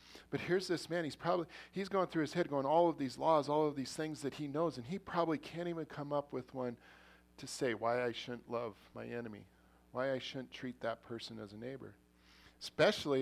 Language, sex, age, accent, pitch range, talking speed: English, male, 40-59, American, 95-140 Hz, 225 wpm